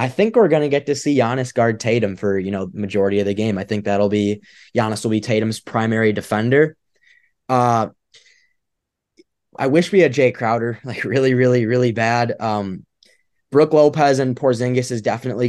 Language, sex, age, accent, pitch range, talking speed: English, male, 10-29, American, 110-140 Hz, 180 wpm